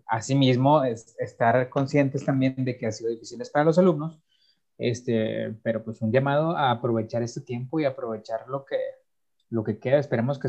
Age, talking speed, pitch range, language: 30-49, 185 wpm, 115-145 Hz, Spanish